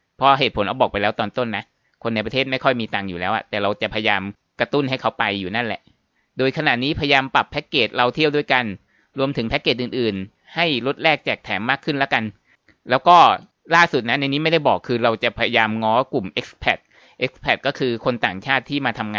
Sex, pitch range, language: male, 110-140 Hz, Thai